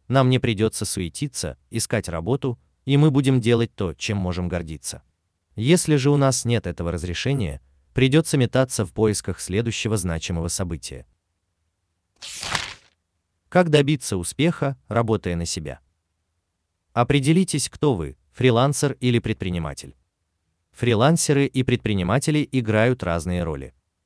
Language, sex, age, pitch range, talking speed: Russian, male, 30-49, 85-130 Hz, 115 wpm